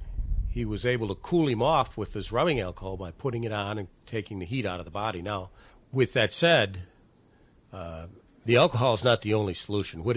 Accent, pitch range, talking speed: American, 95-120 Hz, 210 wpm